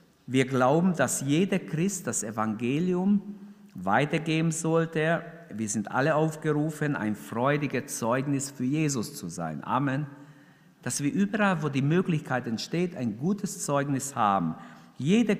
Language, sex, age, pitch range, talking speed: German, male, 50-69, 135-180 Hz, 130 wpm